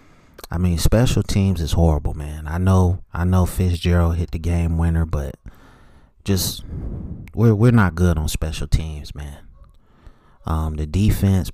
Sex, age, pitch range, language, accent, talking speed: male, 30-49, 85-110 Hz, English, American, 150 wpm